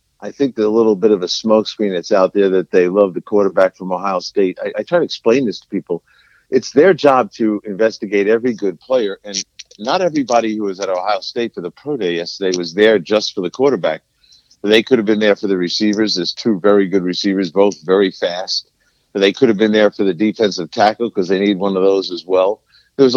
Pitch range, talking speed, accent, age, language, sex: 95-115 Hz, 230 wpm, American, 50-69, English, male